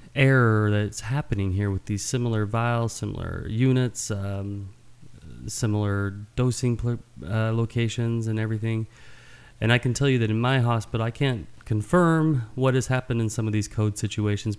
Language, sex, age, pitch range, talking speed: English, male, 30-49, 105-120 Hz, 155 wpm